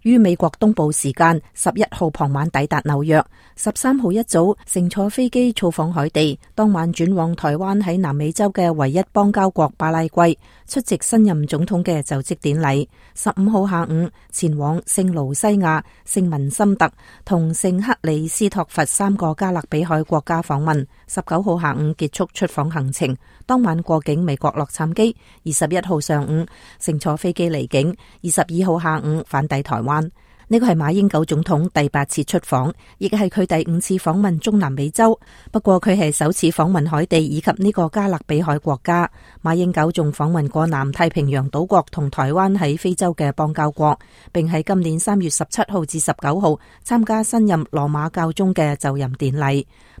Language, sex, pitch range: English, female, 150-190 Hz